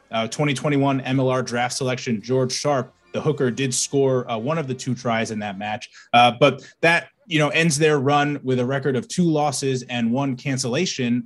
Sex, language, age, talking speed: male, English, 20-39, 195 wpm